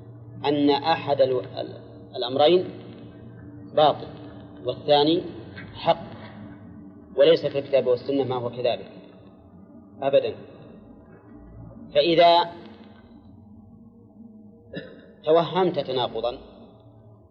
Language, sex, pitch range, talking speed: Arabic, male, 110-145 Hz, 60 wpm